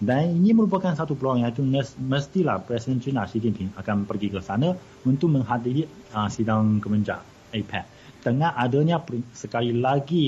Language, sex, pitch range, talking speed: Malay, male, 105-130 Hz, 150 wpm